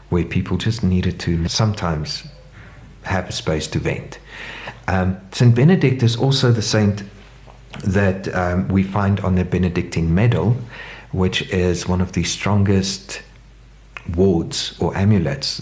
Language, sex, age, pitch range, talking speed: English, male, 50-69, 85-110 Hz, 135 wpm